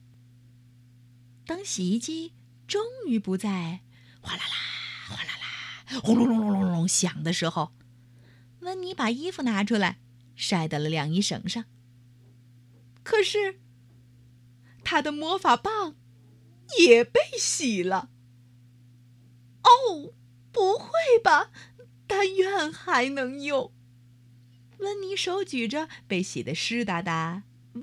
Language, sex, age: Chinese, female, 30-49